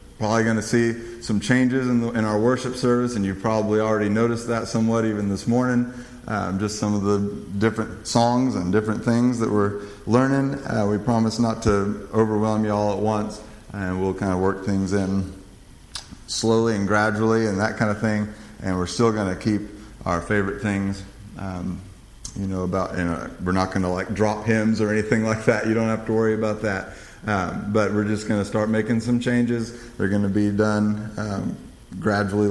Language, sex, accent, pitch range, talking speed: English, male, American, 100-115 Hz, 200 wpm